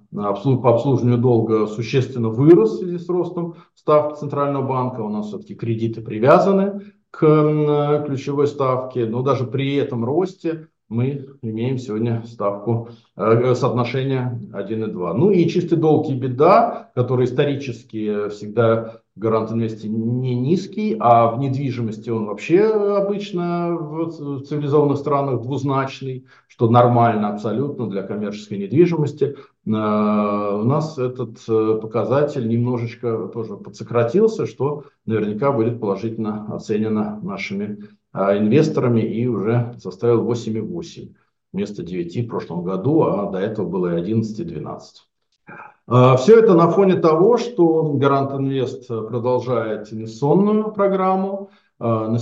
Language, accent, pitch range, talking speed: Russian, native, 115-155 Hz, 115 wpm